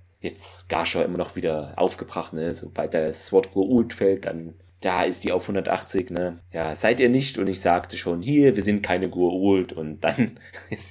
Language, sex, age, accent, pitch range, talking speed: German, male, 30-49, German, 90-105 Hz, 200 wpm